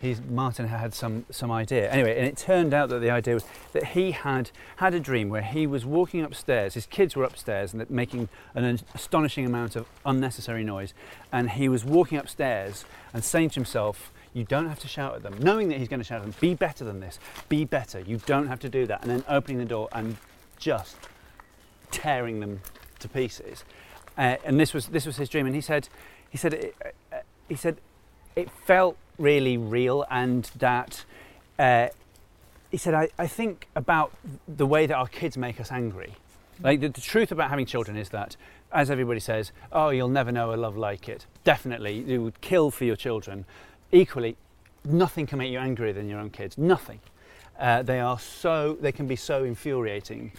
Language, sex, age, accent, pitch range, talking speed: English, male, 40-59, British, 115-150 Hz, 205 wpm